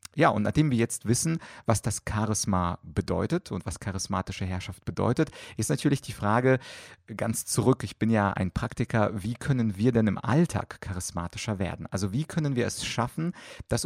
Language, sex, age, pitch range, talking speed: German, male, 30-49, 100-125 Hz, 180 wpm